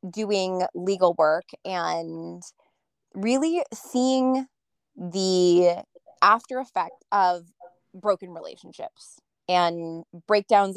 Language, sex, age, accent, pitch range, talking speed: English, female, 20-39, American, 175-225 Hz, 80 wpm